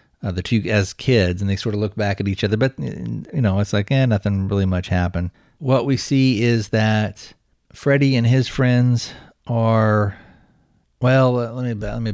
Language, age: English, 40-59